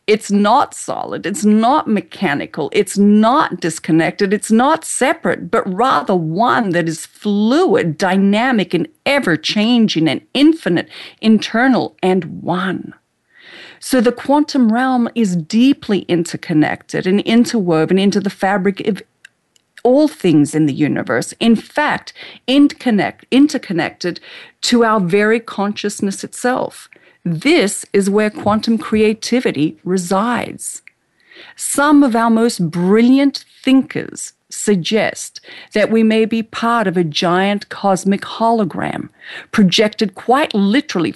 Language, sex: English, female